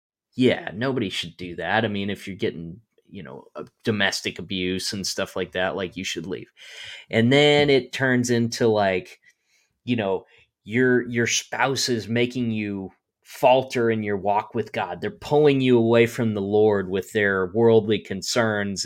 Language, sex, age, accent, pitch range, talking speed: English, male, 20-39, American, 100-125 Hz, 170 wpm